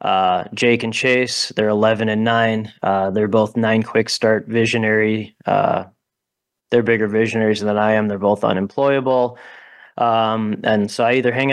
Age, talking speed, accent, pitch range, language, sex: 20-39, 150 wpm, American, 100-115 Hz, English, male